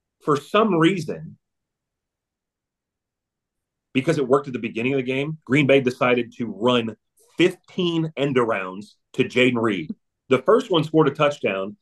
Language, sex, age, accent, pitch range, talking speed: English, male, 30-49, American, 120-155 Hz, 145 wpm